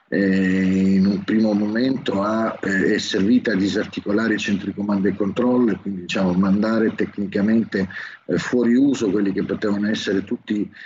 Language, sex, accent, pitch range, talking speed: Italian, male, native, 95-110 Hz, 135 wpm